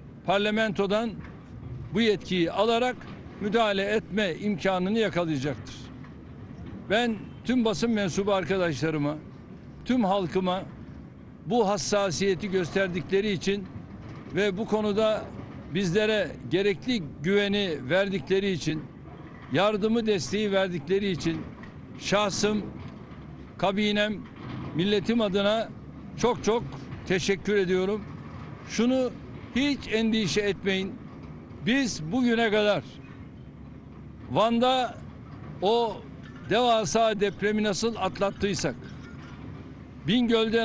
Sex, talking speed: male, 80 wpm